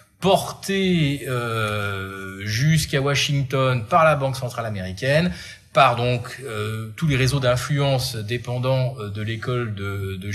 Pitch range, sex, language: 110-140 Hz, male, French